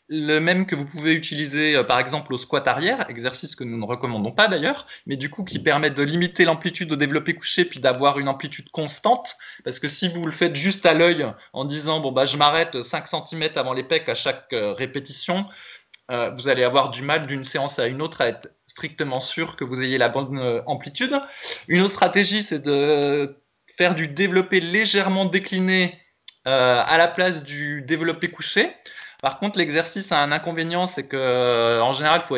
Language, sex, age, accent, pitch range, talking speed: French, male, 20-39, French, 140-180 Hz, 200 wpm